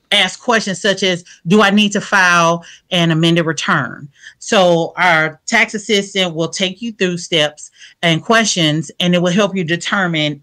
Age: 40-59